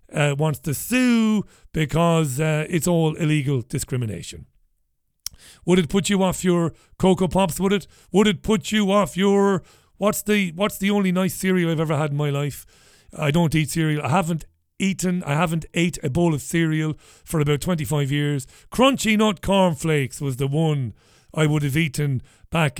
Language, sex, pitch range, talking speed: English, male, 135-180 Hz, 180 wpm